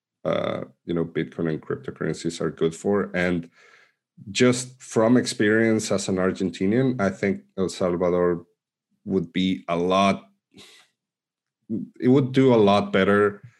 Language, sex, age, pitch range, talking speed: English, male, 30-49, 80-100 Hz, 130 wpm